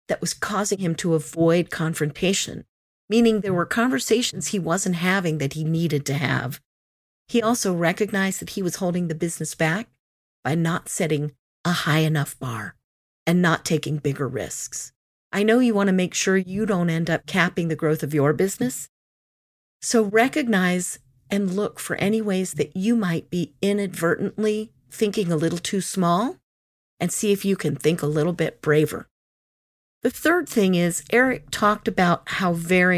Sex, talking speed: female, 170 wpm